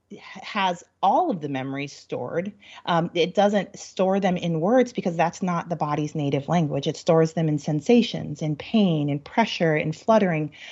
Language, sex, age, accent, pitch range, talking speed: English, female, 30-49, American, 160-195 Hz, 175 wpm